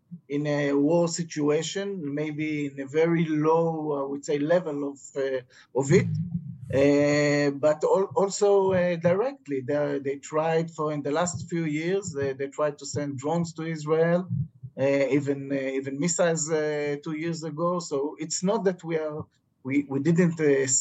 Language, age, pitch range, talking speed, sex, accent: English, 50-69, 145-170 Hz, 170 wpm, male, Israeli